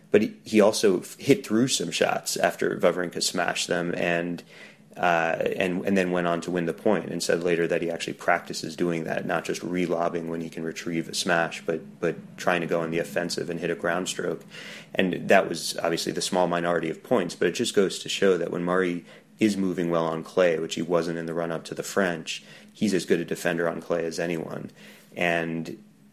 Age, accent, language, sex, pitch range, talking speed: 30-49, American, English, male, 80-90 Hz, 220 wpm